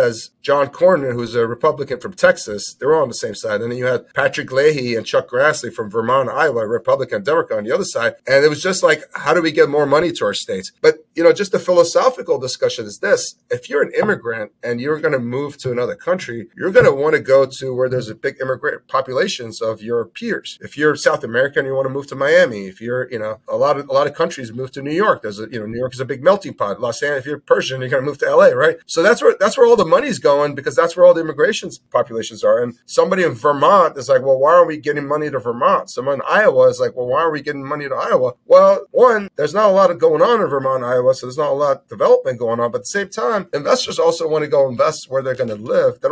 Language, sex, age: English, male, 30-49